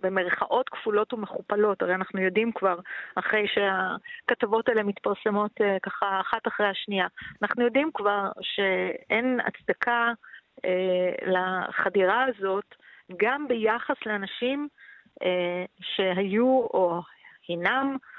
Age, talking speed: 40-59, 100 wpm